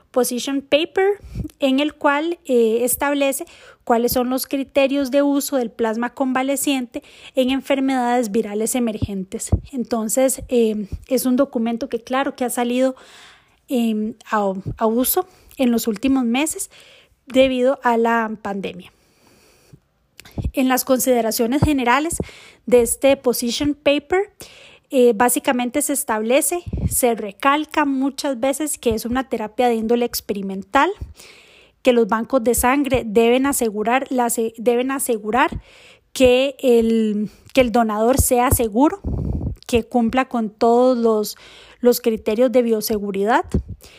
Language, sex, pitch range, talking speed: Spanish, female, 235-275 Hz, 120 wpm